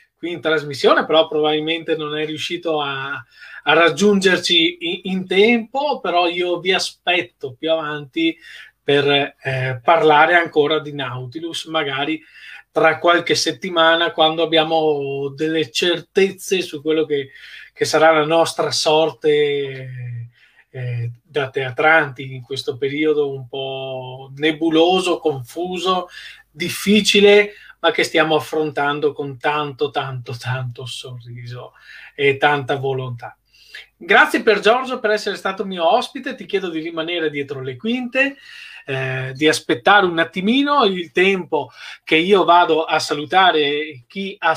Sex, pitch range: male, 145-185 Hz